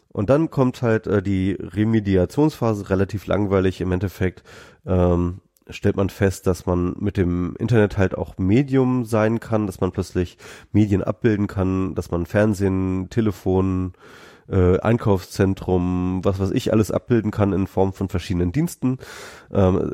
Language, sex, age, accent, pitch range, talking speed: German, male, 30-49, German, 90-100 Hz, 145 wpm